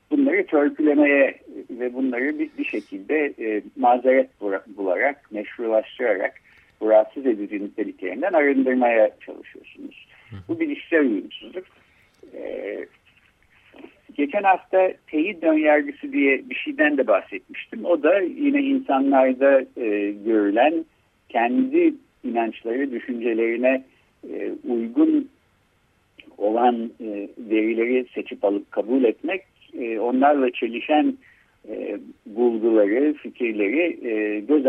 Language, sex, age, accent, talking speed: Turkish, male, 60-79, native, 90 wpm